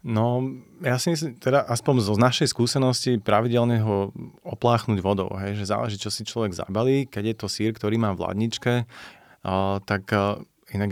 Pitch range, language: 100-115 Hz, Slovak